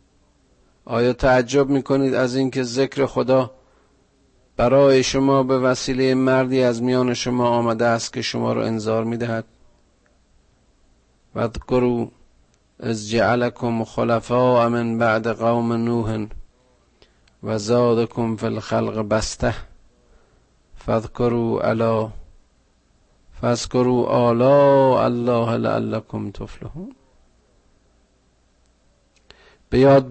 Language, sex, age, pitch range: Persian, male, 50-69, 105-130 Hz